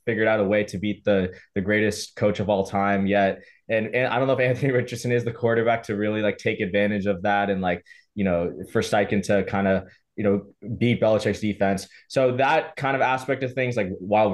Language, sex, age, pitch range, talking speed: English, male, 20-39, 100-115 Hz, 230 wpm